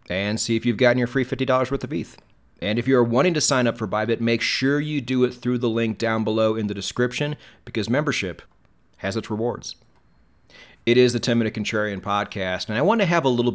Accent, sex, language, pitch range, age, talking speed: American, male, English, 100-125 Hz, 30-49, 230 wpm